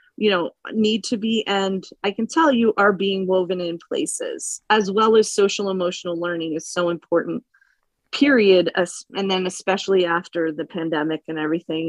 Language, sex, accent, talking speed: English, female, American, 165 wpm